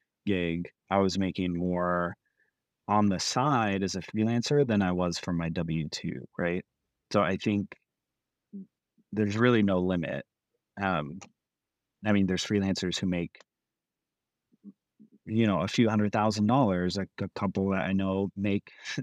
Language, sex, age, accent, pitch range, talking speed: English, male, 30-49, American, 90-105 Hz, 140 wpm